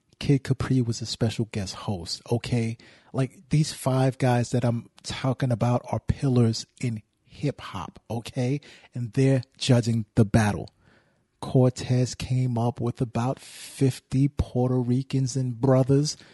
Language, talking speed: English, 130 wpm